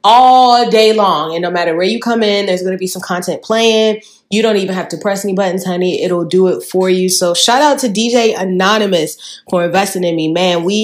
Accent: American